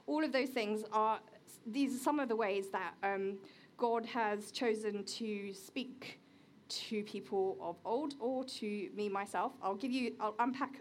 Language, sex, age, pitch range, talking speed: English, female, 20-39, 210-260 Hz, 170 wpm